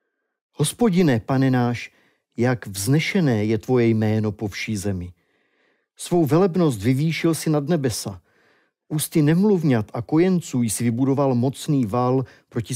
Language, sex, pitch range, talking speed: Czech, male, 115-150 Hz, 120 wpm